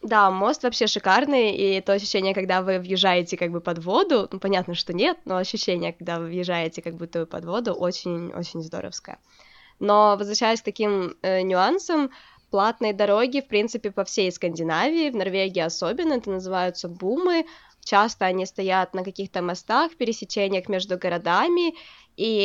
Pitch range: 180-225 Hz